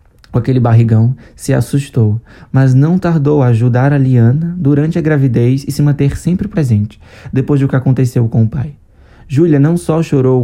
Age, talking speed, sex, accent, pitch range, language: 20-39, 180 wpm, male, Brazilian, 110-145 Hz, Portuguese